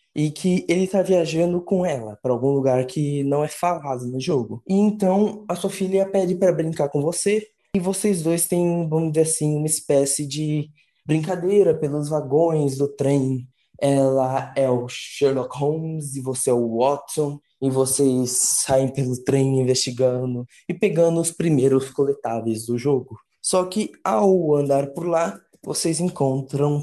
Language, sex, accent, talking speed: Portuguese, male, Brazilian, 160 wpm